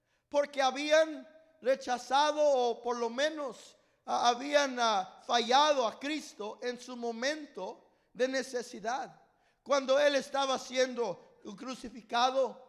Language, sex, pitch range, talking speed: English, male, 230-270 Hz, 100 wpm